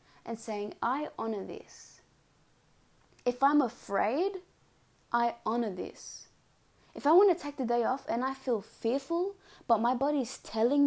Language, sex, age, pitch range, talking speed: English, female, 20-39, 205-265 Hz, 150 wpm